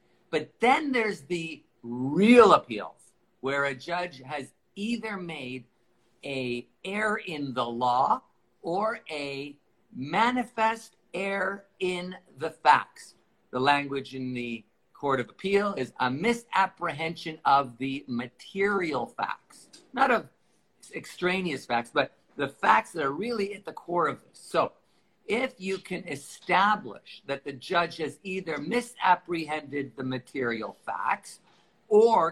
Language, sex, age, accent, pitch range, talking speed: English, male, 50-69, American, 135-195 Hz, 125 wpm